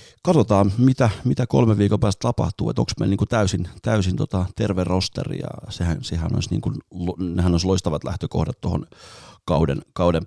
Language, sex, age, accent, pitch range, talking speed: Finnish, male, 30-49, native, 80-100 Hz, 170 wpm